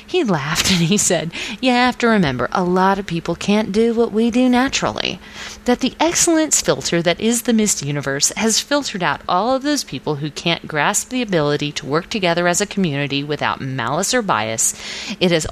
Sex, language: female, English